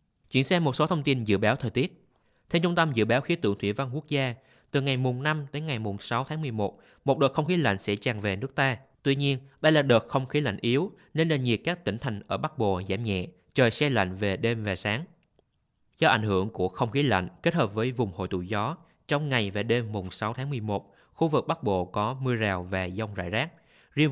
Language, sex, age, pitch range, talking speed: Vietnamese, male, 20-39, 110-145 Hz, 255 wpm